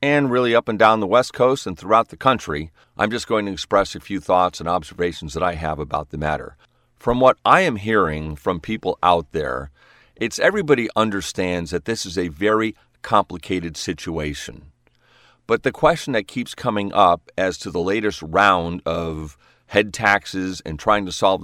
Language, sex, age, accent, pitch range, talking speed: English, male, 40-59, American, 85-105 Hz, 185 wpm